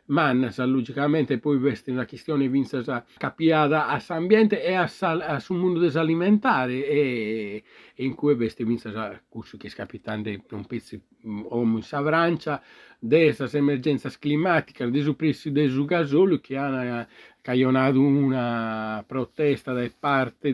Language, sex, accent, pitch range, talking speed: Italian, male, native, 120-150 Hz, 130 wpm